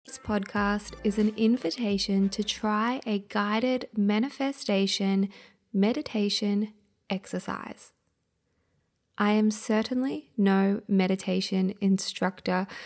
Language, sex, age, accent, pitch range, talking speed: English, female, 20-39, Australian, 195-225 Hz, 85 wpm